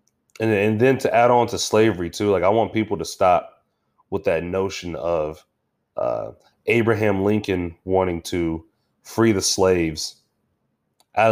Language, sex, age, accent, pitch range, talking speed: English, male, 30-49, American, 85-105 Hz, 145 wpm